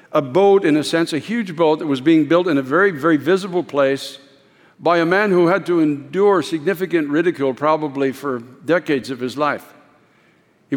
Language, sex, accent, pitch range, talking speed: English, male, American, 150-195 Hz, 190 wpm